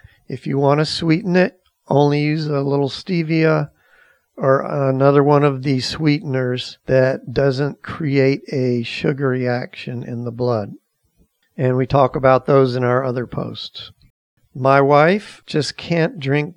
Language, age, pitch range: English, 50-69, 125-150 Hz